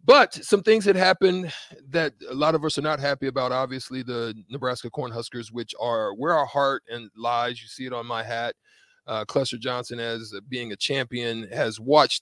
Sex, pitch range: male, 120-155 Hz